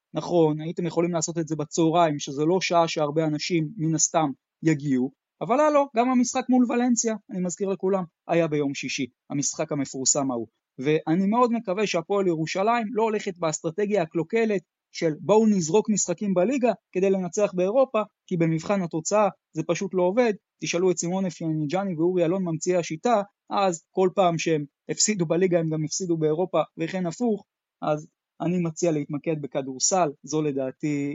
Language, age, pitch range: Hebrew, 20-39, 150-200 Hz